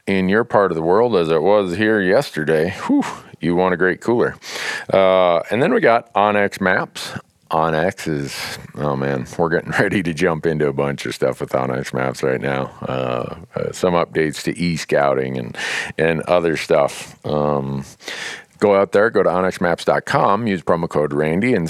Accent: American